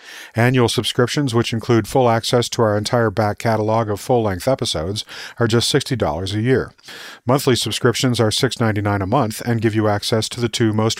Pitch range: 105-125 Hz